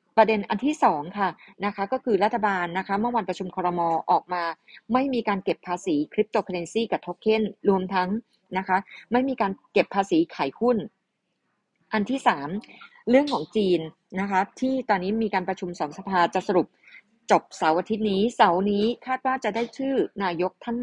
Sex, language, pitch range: female, Thai, 185-230 Hz